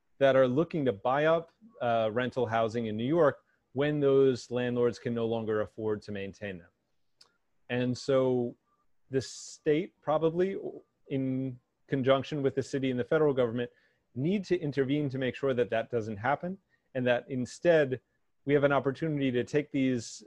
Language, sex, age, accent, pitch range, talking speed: English, male, 30-49, American, 115-135 Hz, 165 wpm